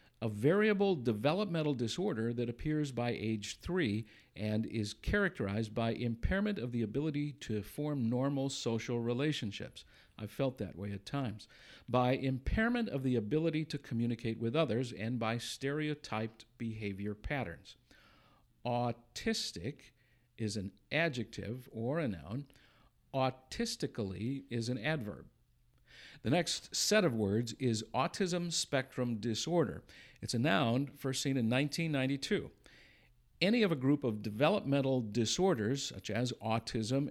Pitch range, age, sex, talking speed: 115-150 Hz, 50-69, male, 130 wpm